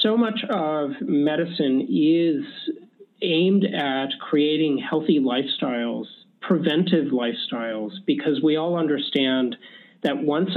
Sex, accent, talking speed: male, American, 100 wpm